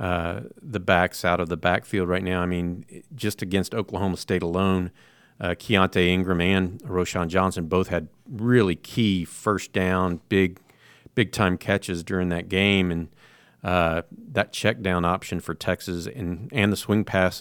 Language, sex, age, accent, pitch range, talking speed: English, male, 50-69, American, 90-110 Hz, 160 wpm